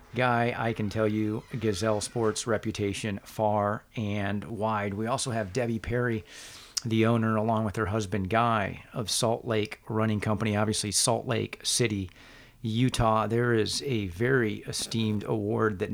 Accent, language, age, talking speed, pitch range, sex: American, English, 40-59, 150 wpm, 105-120 Hz, male